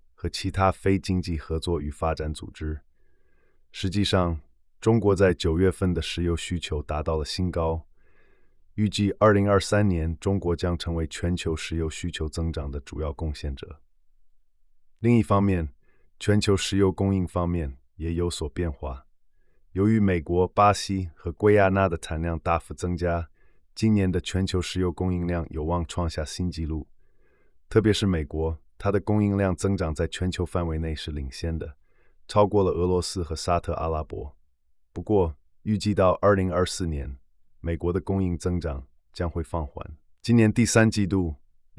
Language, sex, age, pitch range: Chinese, male, 20-39, 80-95 Hz